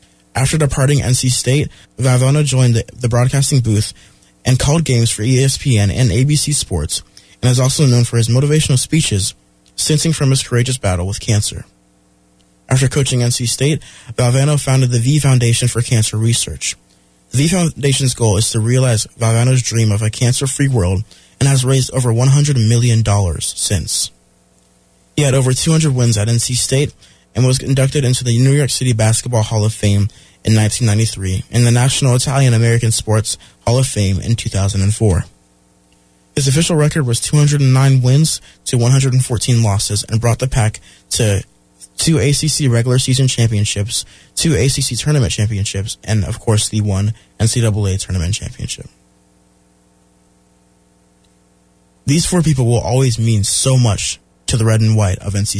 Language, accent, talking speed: English, American, 155 wpm